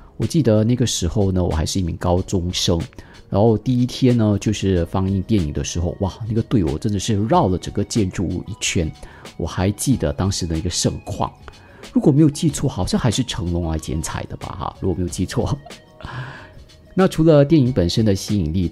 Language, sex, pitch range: Chinese, male, 90-115 Hz